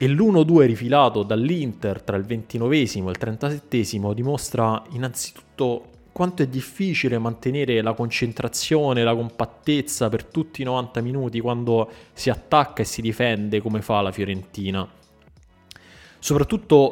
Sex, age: male, 20-39